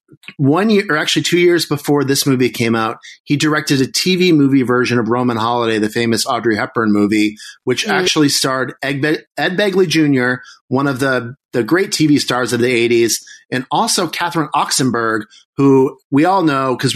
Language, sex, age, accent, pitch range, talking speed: English, male, 30-49, American, 125-155 Hz, 185 wpm